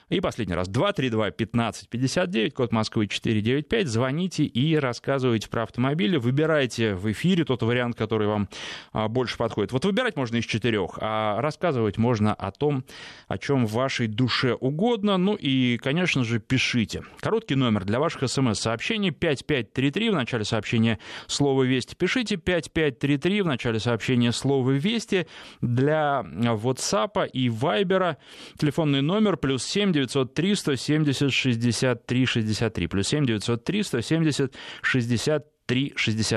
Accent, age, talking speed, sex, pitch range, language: native, 20-39, 135 wpm, male, 115-155 Hz, Russian